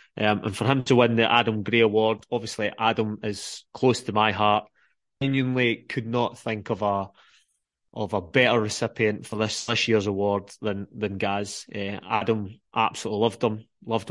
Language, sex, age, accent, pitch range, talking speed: English, male, 20-39, British, 105-120 Hz, 180 wpm